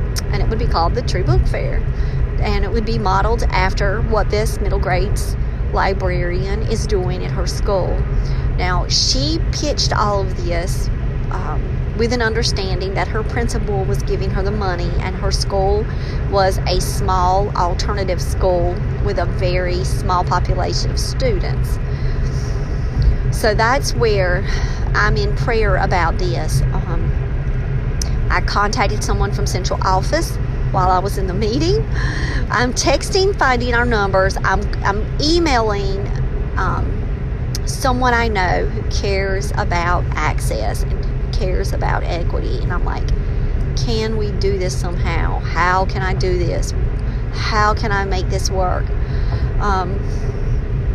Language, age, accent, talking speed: English, 40-59, American, 140 wpm